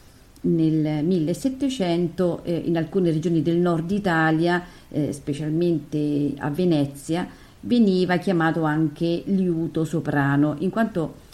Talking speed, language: 105 wpm, Italian